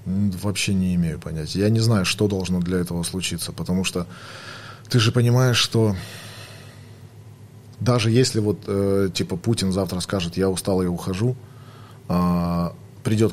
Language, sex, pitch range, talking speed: Russian, male, 95-120 Hz, 135 wpm